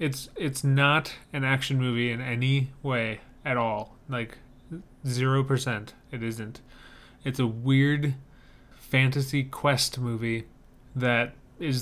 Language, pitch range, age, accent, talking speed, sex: English, 120-140 Hz, 30-49, American, 120 wpm, male